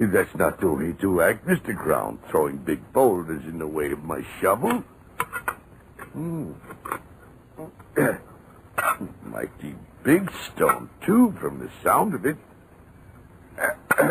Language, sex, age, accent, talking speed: English, male, 60-79, American, 115 wpm